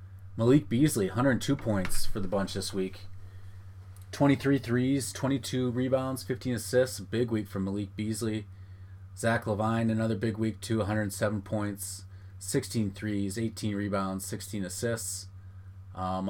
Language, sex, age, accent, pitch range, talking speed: English, male, 30-49, American, 95-110 Hz, 130 wpm